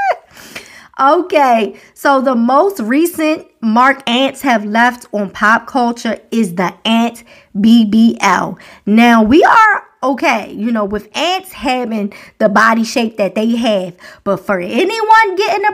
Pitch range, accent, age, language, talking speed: 225-290 Hz, American, 20-39, English, 135 wpm